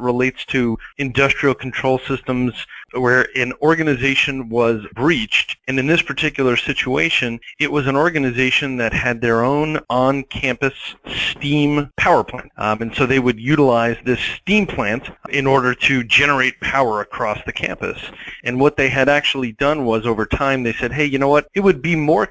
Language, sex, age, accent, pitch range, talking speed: English, male, 40-59, American, 115-140 Hz, 170 wpm